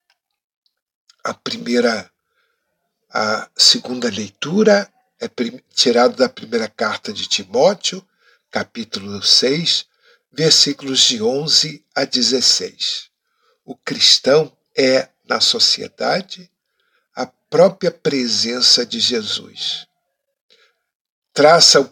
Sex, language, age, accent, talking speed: male, Portuguese, 60-79, Brazilian, 85 wpm